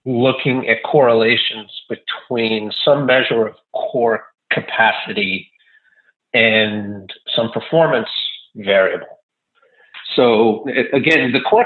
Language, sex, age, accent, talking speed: English, male, 50-69, American, 85 wpm